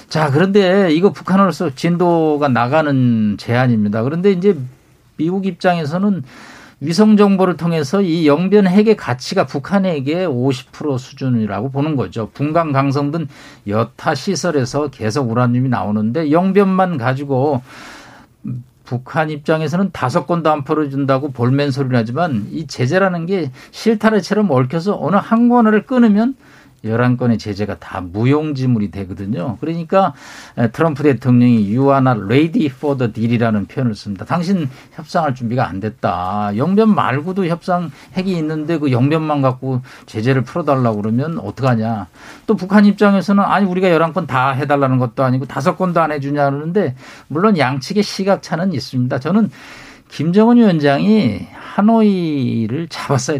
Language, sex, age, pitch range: Korean, male, 50-69, 125-180 Hz